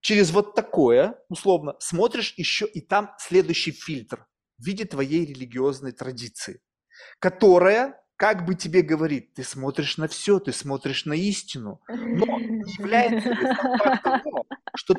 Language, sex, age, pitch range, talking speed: Russian, male, 30-49, 155-210 Hz, 130 wpm